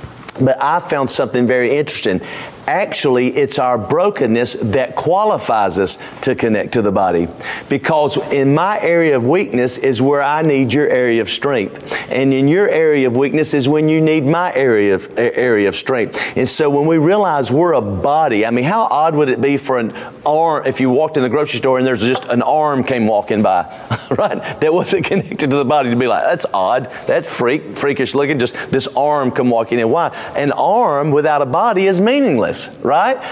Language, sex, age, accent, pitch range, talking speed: English, male, 40-59, American, 130-155 Hz, 205 wpm